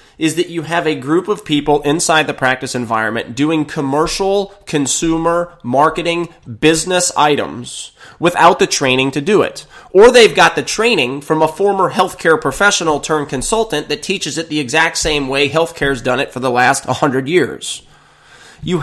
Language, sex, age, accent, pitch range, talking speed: English, male, 30-49, American, 135-180 Hz, 165 wpm